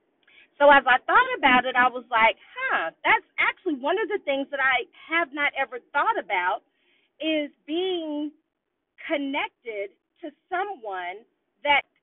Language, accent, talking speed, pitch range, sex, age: English, American, 145 wpm, 275-350 Hz, female, 40-59